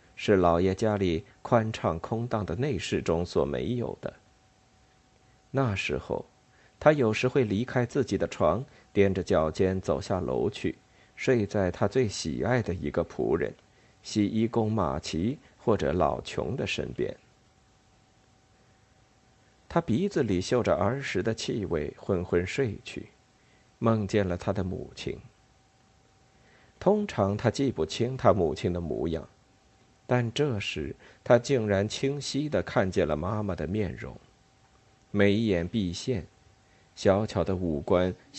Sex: male